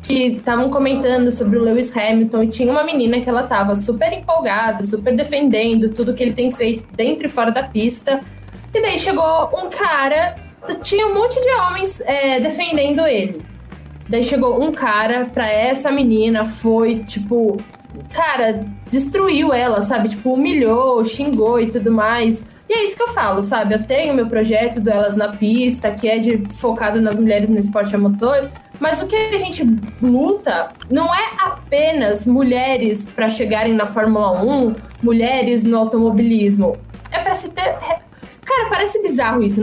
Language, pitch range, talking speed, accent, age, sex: Portuguese, 225-310 Hz, 170 wpm, Brazilian, 10-29, female